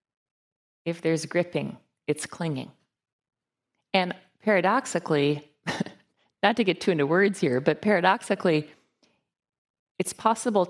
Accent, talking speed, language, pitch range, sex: American, 100 wpm, English, 170-200 Hz, female